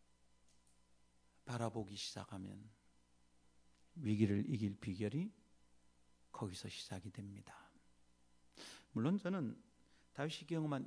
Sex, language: male, Korean